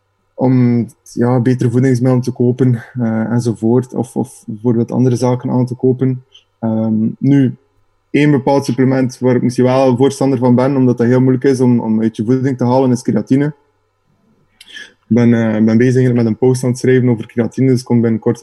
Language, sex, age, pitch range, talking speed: Dutch, male, 20-39, 115-130 Hz, 195 wpm